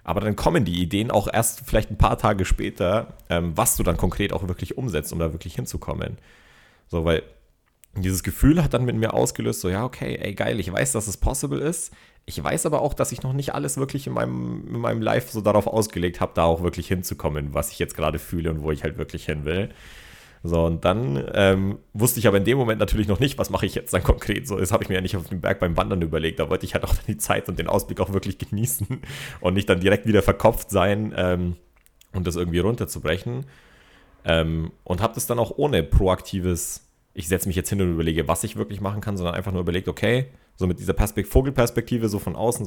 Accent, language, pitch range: German, German, 85-110 Hz